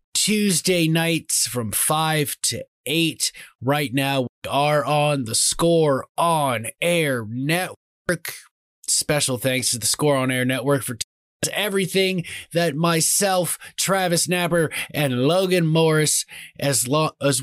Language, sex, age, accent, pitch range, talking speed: English, male, 20-39, American, 130-170 Hz, 120 wpm